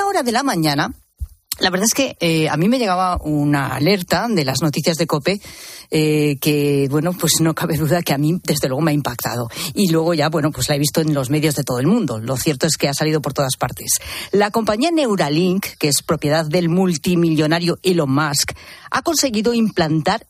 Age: 40-59